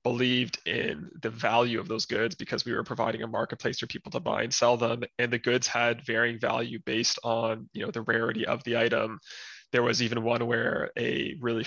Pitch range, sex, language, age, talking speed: 115-130 Hz, male, English, 20-39, 215 wpm